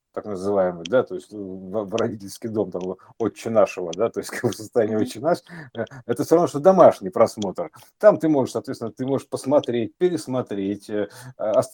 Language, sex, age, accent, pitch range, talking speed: Russian, male, 50-69, native, 100-135 Hz, 160 wpm